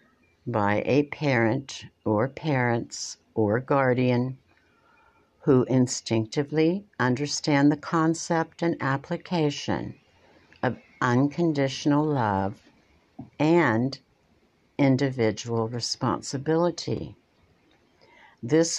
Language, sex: English, female